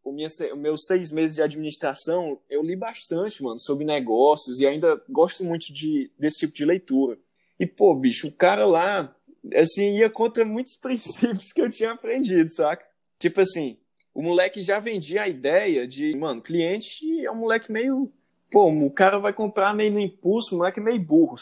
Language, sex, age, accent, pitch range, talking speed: Portuguese, male, 20-39, Brazilian, 150-205 Hz, 185 wpm